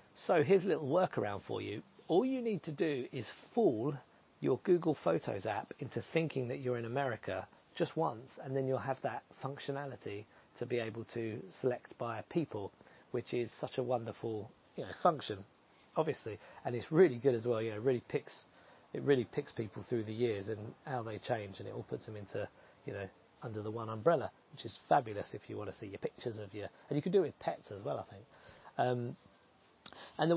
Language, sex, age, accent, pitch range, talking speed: English, male, 40-59, British, 115-155 Hz, 210 wpm